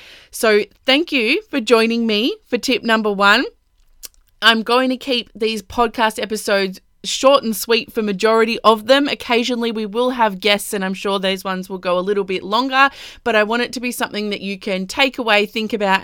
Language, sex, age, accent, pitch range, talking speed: English, female, 20-39, Australian, 210-265 Hz, 200 wpm